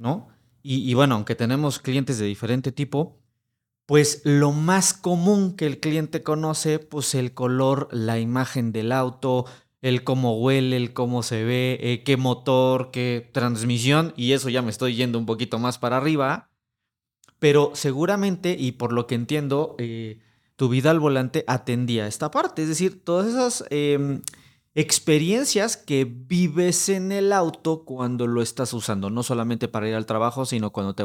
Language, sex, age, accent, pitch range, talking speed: Spanish, male, 30-49, Mexican, 120-155 Hz, 165 wpm